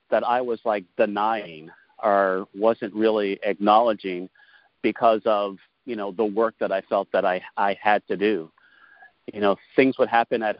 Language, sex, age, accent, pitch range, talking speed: English, male, 40-59, American, 105-120 Hz, 170 wpm